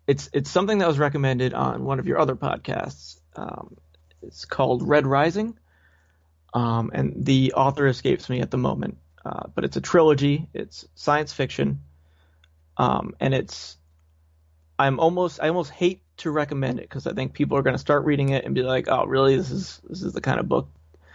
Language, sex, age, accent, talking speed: English, male, 30-49, American, 195 wpm